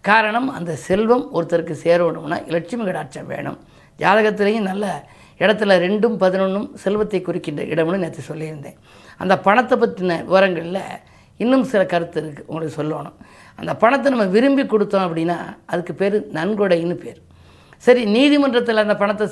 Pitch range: 170-220 Hz